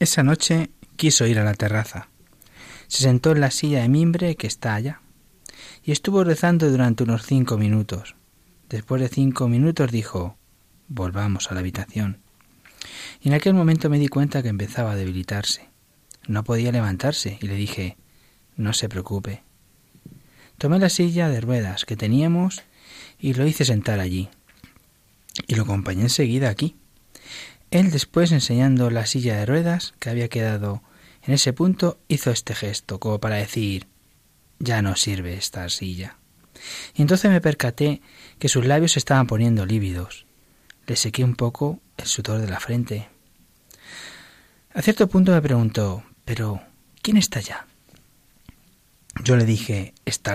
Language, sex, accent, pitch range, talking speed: Spanish, male, Spanish, 105-145 Hz, 150 wpm